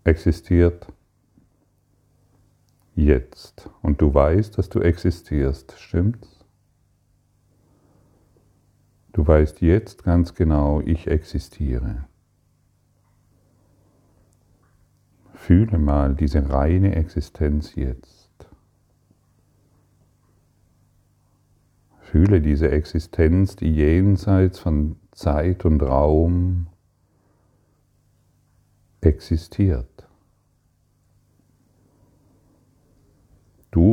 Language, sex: German, male